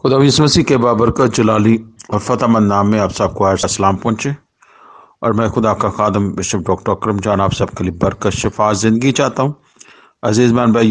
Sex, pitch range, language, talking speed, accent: male, 100-120 Hz, English, 195 wpm, Indian